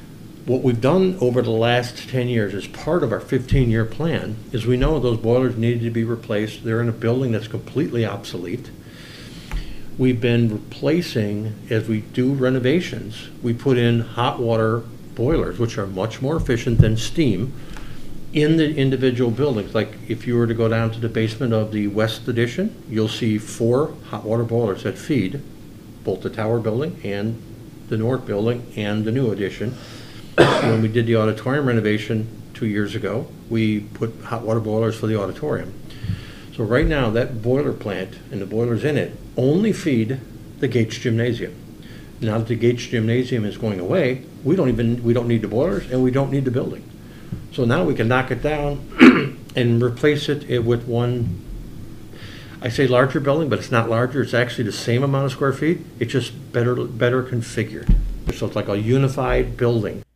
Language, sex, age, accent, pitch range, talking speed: English, male, 60-79, American, 110-130 Hz, 185 wpm